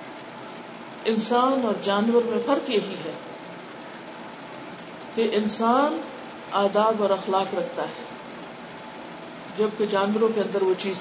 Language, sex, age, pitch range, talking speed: Urdu, female, 50-69, 225-290 Hz, 115 wpm